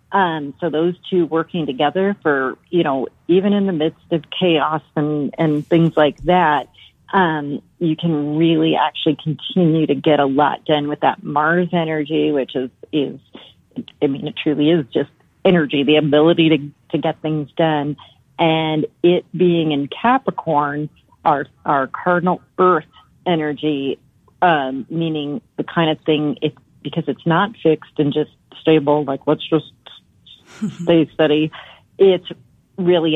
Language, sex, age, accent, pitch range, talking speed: English, female, 40-59, American, 150-170 Hz, 150 wpm